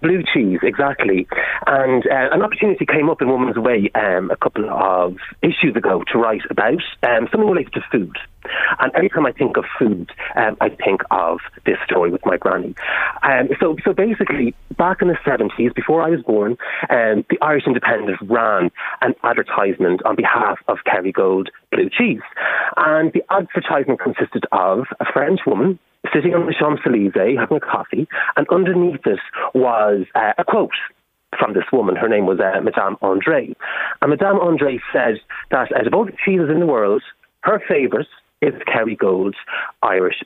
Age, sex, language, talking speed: 30-49, male, English, 175 wpm